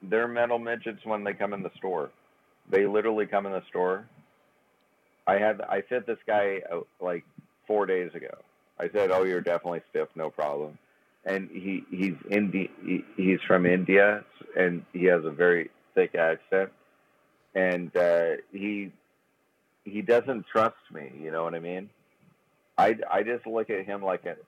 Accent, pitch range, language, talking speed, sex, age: American, 90-110 Hz, English, 170 wpm, male, 40-59